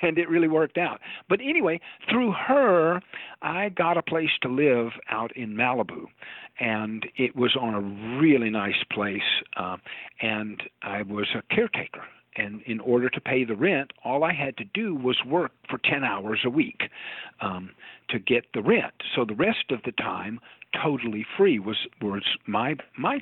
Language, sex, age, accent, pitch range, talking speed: English, male, 50-69, American, 110-150 Hz, 175 wpm